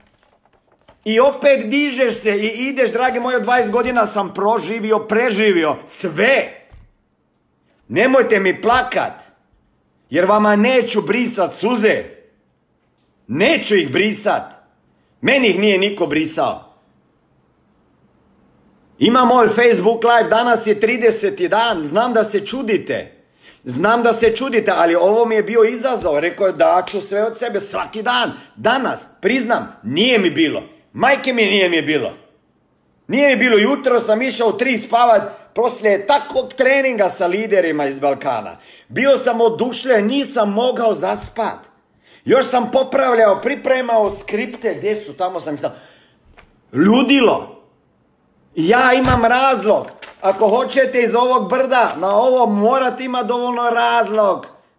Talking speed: 130 wpm